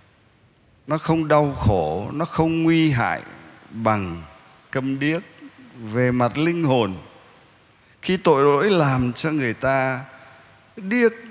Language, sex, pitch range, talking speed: Vietnamese, male, 110-155 Hz, 120 wpm